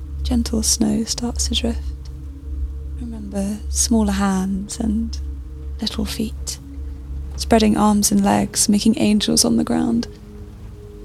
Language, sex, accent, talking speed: English, female, British, 115 wpm